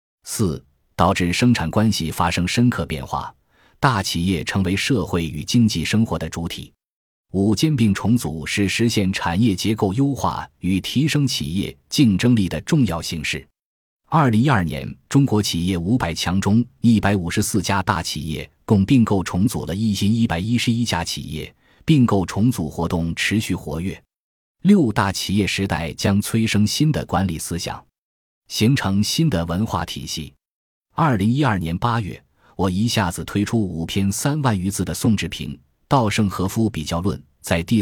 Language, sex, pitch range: Chinese, male, 85-115 Hz